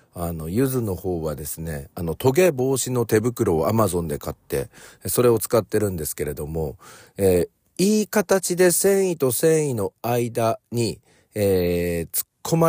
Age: 40-59